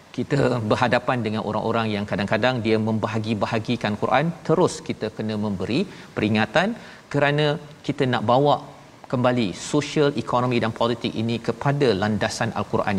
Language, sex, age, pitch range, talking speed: Malayalam, male, 40-59, 110-140 Hz, 125 wpm